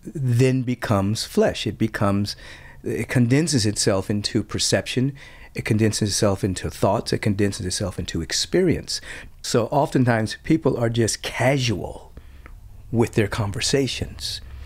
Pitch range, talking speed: 100-130 Hz, 120 wpm